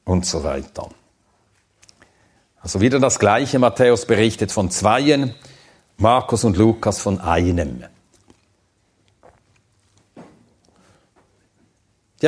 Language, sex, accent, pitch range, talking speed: German, male, German, 105-140 Hz, 85 wpm